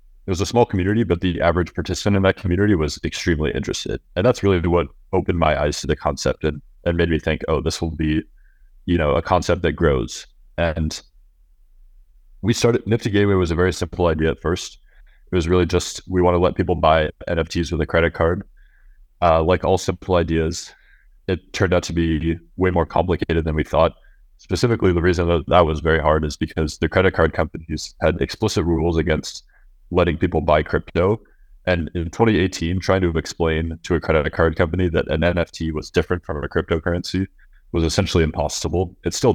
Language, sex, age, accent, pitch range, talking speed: English, male, 30-49, American, 80-90 Hz, 195 wpm